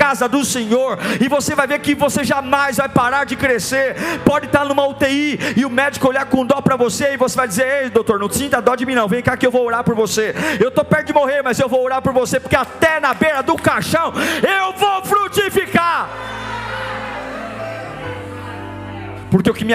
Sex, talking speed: male, 215 wpm